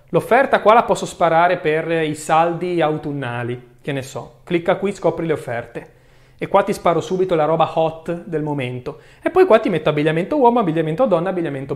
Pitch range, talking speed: 145-210 Hz, 190 wpm